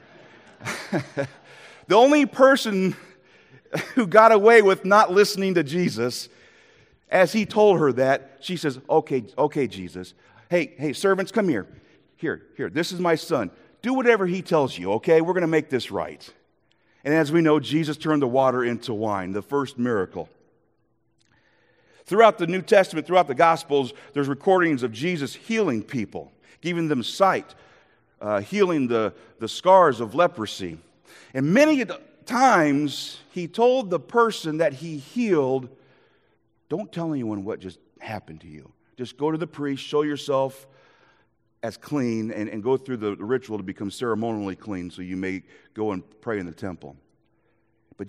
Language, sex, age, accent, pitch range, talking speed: English, male, 40-59, American, 115-180 Hz, 160 wpm